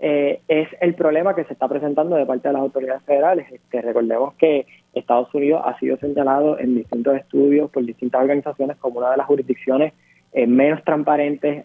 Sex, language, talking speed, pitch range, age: male, Spanish, 185 wpm, 130-160 Hz, 20-39